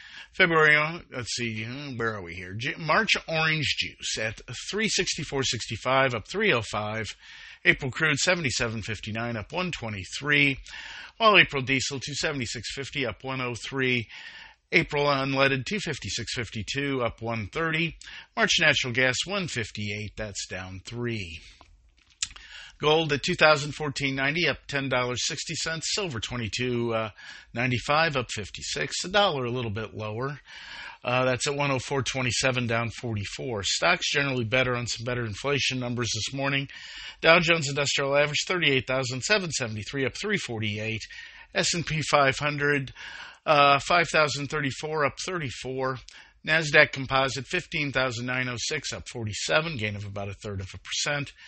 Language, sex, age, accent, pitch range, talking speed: English, male, 50-69, American, 115-150 Hz, 140 wpm